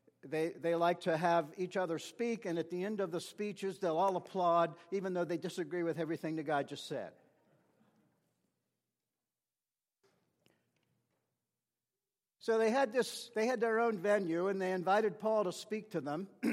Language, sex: English, male